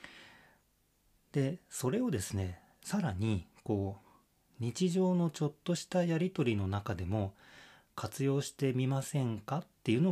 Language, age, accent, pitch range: Japanese, 40-59, native, 95-140 Hz